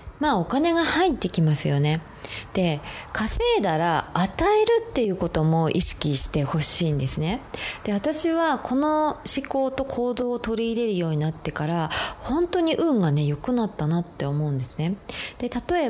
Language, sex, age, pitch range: Japanese, female, 20-39, 155-260 Hz